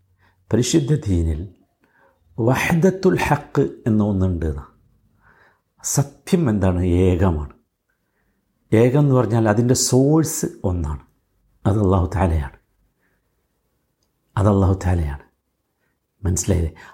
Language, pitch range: Malayalam, 95-160 Hz